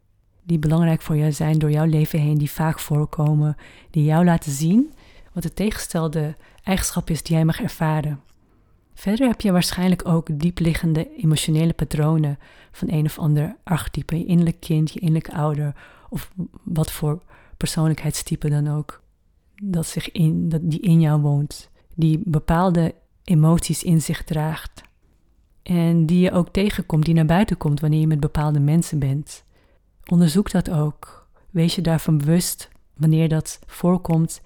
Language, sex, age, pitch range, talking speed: Dutch, female, 30-49, 150-170 Hz, 150 wpm